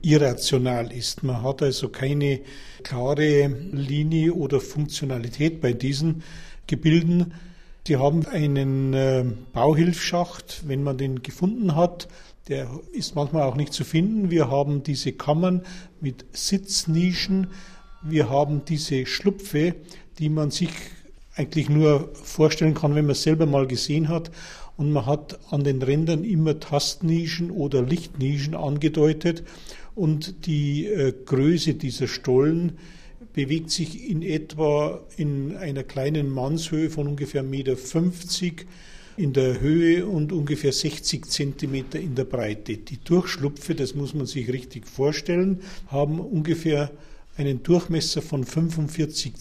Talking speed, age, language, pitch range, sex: 130 wpm, 50-69, German, 140-170 Hz, male